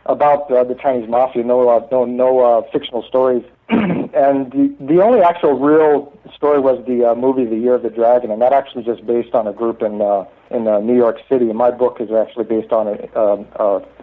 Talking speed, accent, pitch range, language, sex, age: 220 wpm, American, 115-130 Hz, English, male, 50-69